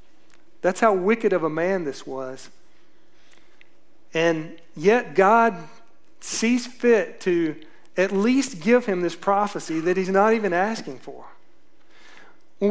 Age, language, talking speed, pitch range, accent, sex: 40-59, English, 125 wpm, 165-230 Hz, American, male